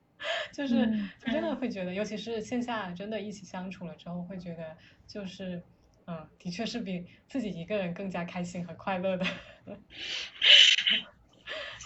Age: 20-39